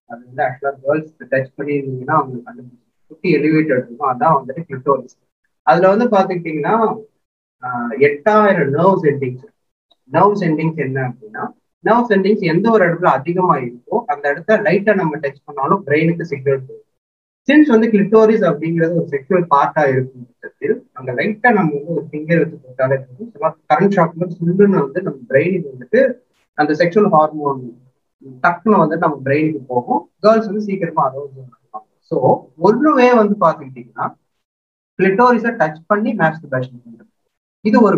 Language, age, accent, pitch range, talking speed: Tamil, 20-39, native, 140-195 Hz, 110 wpm